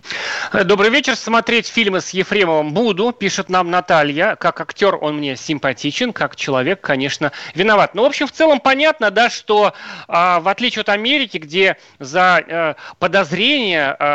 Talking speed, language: 140 wpm, Russian